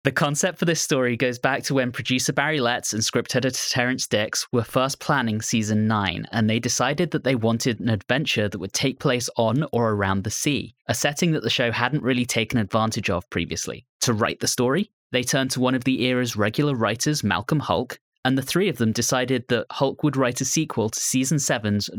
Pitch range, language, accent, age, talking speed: 110-135 Hz, English, British, 20-39, 220 wpm